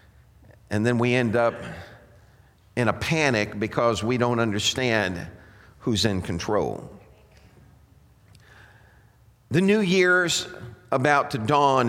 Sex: male